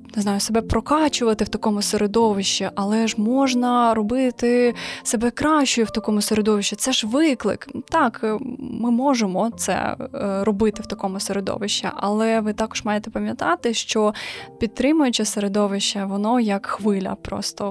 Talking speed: 130 wpm